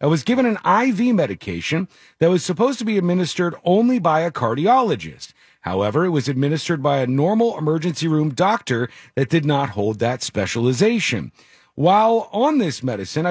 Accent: American